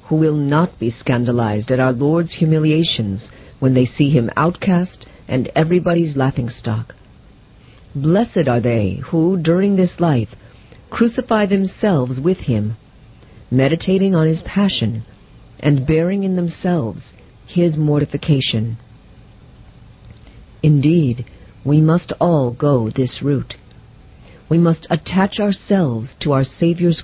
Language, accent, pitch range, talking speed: English, American, 120-175 Hz, 115 wpm